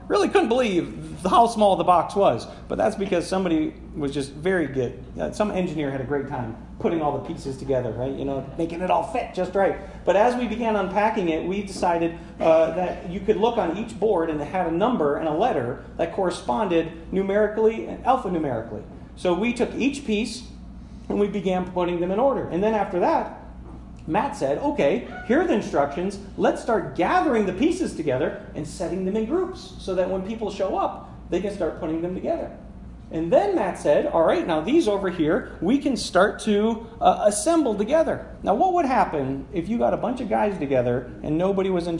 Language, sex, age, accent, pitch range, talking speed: English, male, 40-59, American, 165-225 Hz, 205 wpm